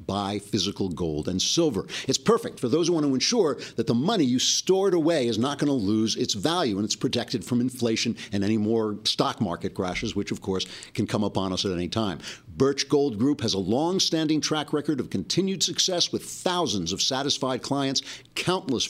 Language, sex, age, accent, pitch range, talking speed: English, male, 60-79, American, 110-145 Hz, 205 wpm